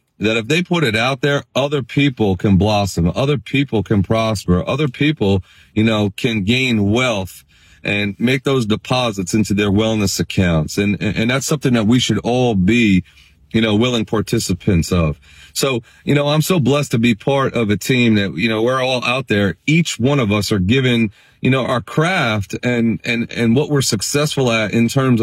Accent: American